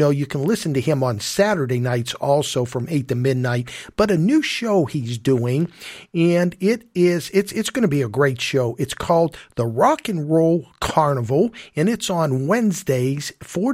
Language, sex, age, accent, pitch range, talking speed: English, male, 50-69, American, 130-190 Hz, 190 wpm